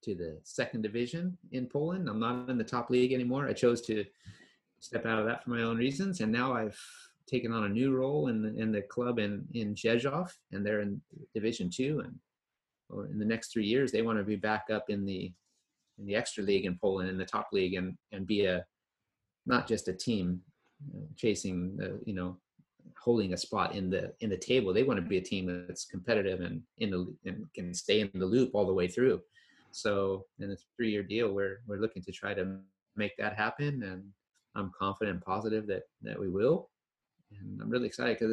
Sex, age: male, 30-49